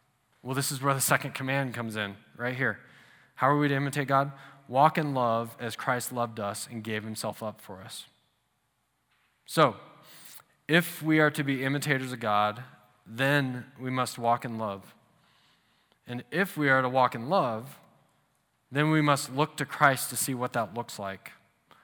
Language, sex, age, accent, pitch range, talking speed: English, male, 20-39, American, 115-140 Hz, 180 wpm